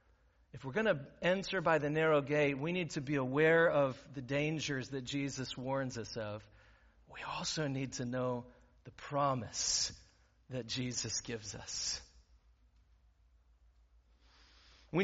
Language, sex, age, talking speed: English, male, 40-59, 135 wpm